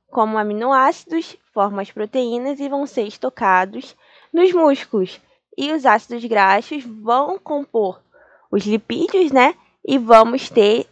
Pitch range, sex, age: 200-280 Hz, female, 10-29